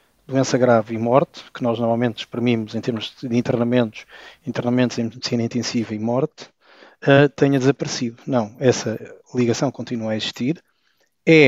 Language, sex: Portuguese, male